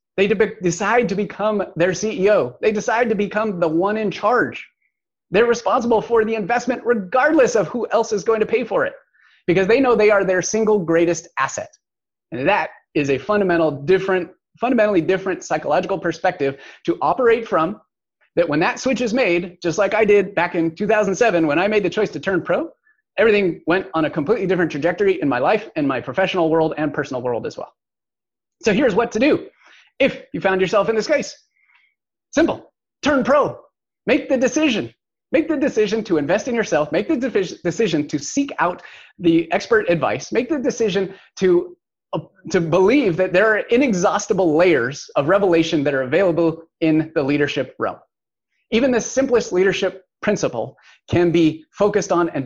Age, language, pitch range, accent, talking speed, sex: 30-49, English, 170-235 Hz, American, 180 wpm, male